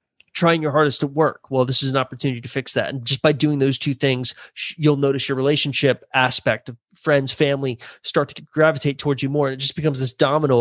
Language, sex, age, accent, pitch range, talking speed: English, male, 30-49, American, 130-160 Hz, 230 wpm